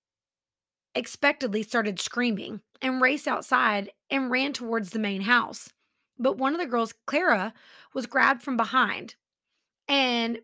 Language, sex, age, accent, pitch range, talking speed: English, female, 30-49, American, 225-275 Hz, 130 wpm